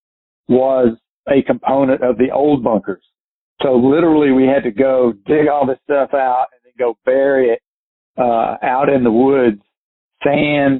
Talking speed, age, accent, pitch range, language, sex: 160 wpm, 50-69, American, 120-140 Hz, English, male